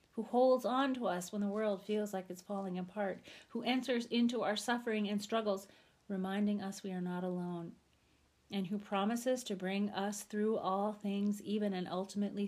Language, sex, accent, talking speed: English, female, American, 185 wpm